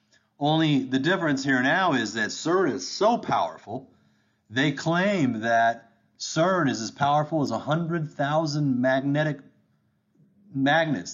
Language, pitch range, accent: English, 110-150 Hz, American